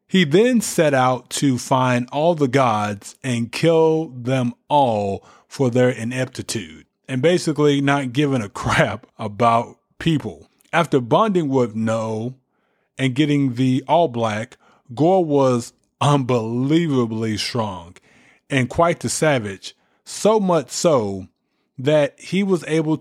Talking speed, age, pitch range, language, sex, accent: 125 wpm, 30-49, 115-145 Hz, English, male, American